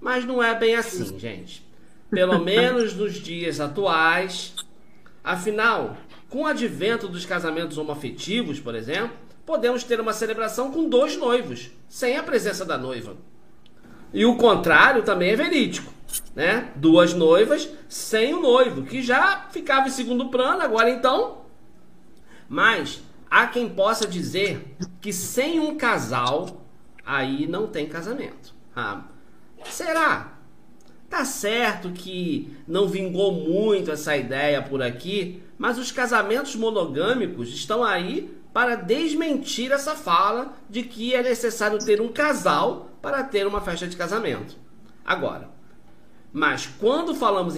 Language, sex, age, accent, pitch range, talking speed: Portuguese, male, 40-59, Brazilian, 175-250 Hz, 130 wpm